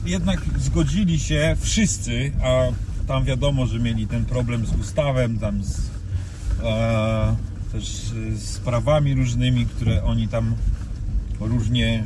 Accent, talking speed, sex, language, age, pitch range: native, 120 wpm, male, Polish, 40-59, 105-135 Hz